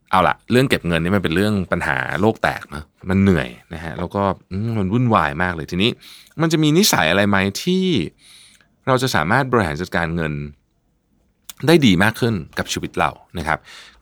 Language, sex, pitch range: Thai, male, 85-125 Hz